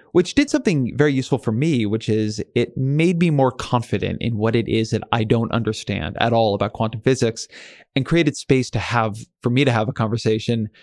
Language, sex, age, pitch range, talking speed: English, male, 20-39, 110-135 Hz, 210 wpm